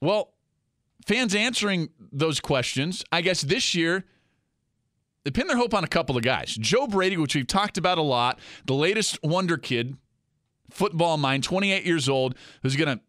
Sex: male